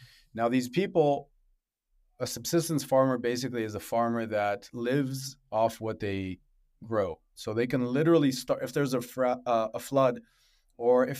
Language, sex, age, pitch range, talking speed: English, male, 30-49, 110-140 Hz, 160 wpm